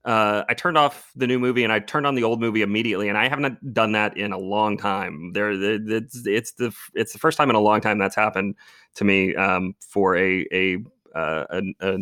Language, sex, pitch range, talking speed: English, male, 100-130 Hz, 230 wpm